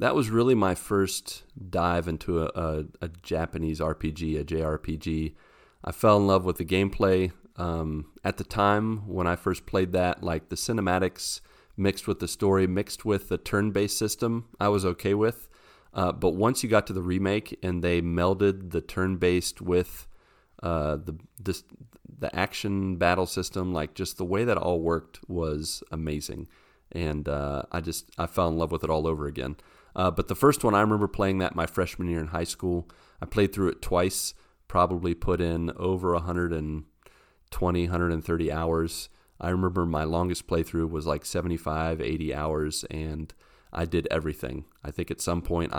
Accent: American